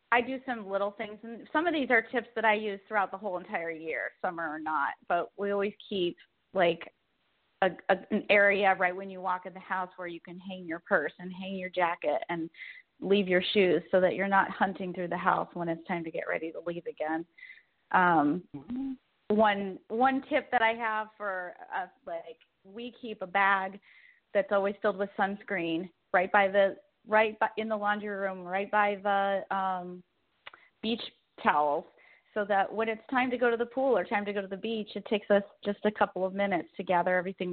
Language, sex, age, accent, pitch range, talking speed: English, female, 30-49, American, 180-215 Hz, 205 wpm